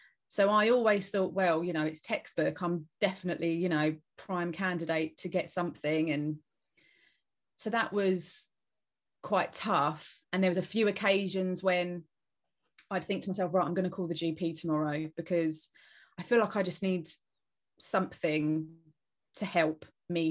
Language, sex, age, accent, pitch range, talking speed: English, female, 30-49, British, 170-210 Hz, 160 wpm